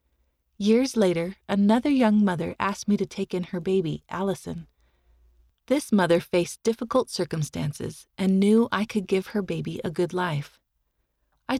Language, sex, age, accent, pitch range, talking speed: English, female, 30-49, American, 175-235 Hz, 150 wpm